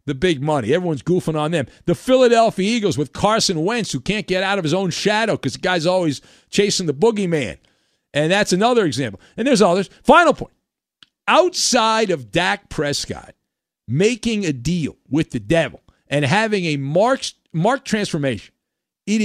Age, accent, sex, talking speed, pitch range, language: 50-69, American, male, 165 wpm, 150-210 Hz, English